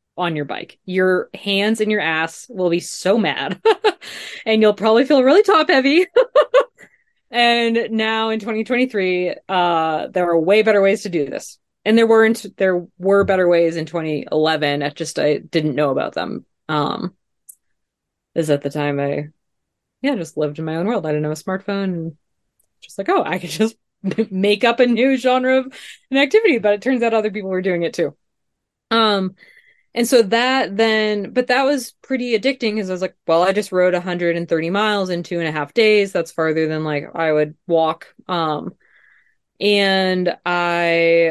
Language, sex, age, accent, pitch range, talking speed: English, female, 20-39, American, 165-225 Hz, 185 wpm